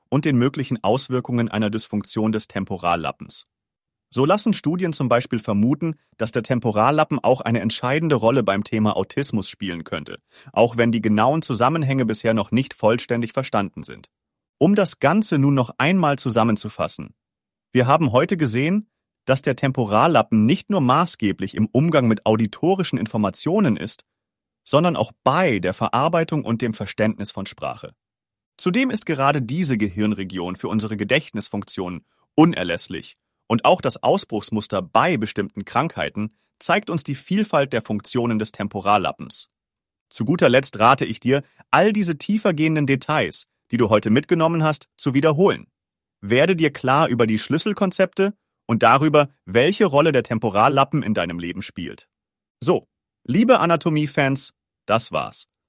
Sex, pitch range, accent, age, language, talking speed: male, 110-155 Hz, German, 40-59, English, 140 wpm